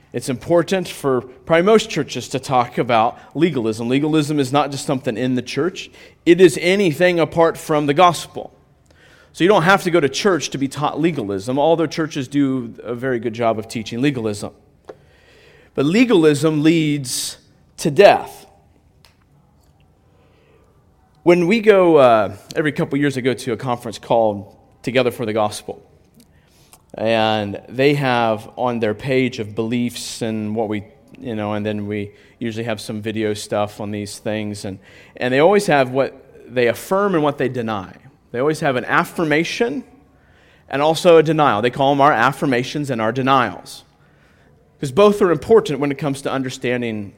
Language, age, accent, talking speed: English, 30-49, American, 165 wpm